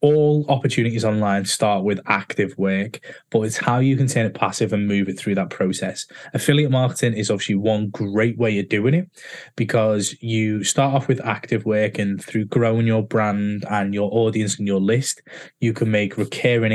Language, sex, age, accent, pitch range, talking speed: English, male, 20-39, British, 105-125 Hz, 190 wpm